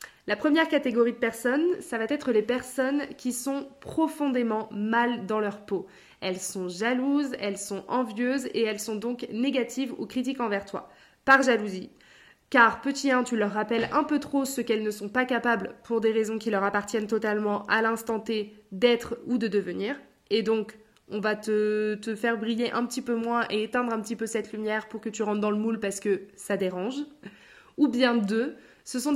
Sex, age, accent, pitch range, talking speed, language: female, 20-39, French, 210-250 Hz, 200 wpm, French